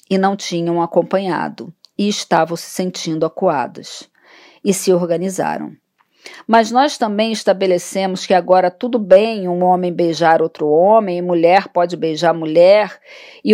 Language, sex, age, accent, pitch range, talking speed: Portuguese, female, 40-59, Brazilian, 180-230 Hz, 135 wpm